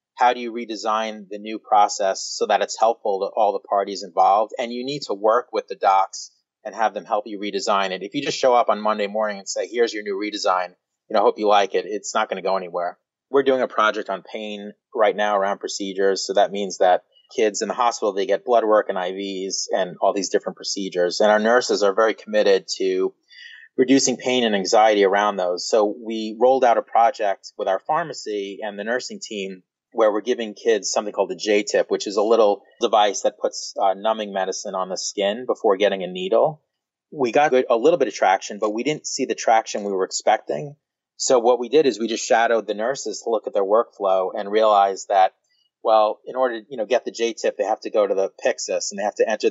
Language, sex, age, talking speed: English, male, 30-49, 235 wpm